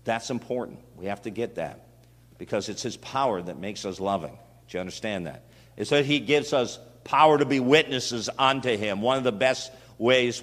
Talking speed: 200 wpm